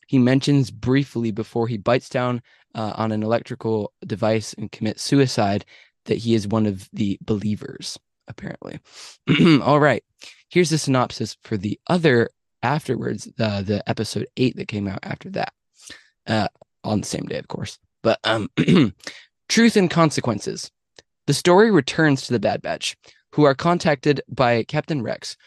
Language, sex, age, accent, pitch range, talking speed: English, male, 20-39, American, 115-145 Hz, 155 wpm